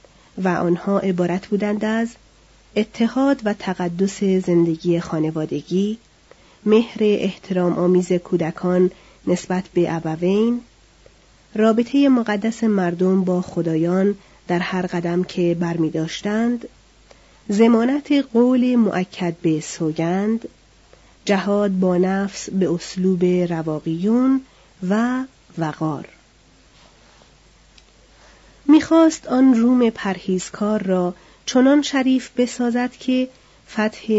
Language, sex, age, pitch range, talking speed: Persian, female, 40-59, 180-230 Hz, 90 wpm